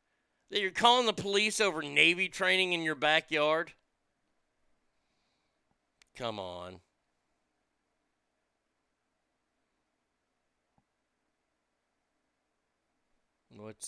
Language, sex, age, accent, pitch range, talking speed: English, male, 50-69, American, 125-185 Hz, 55 wpm